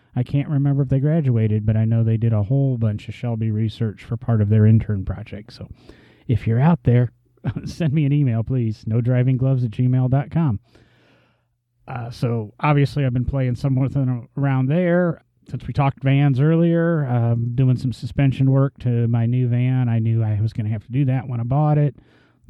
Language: English